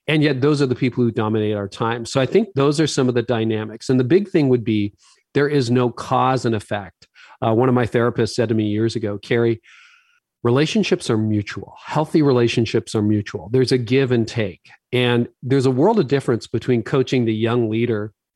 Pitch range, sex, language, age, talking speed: 115-145 Hz, male, English, 40-59, 210 wpm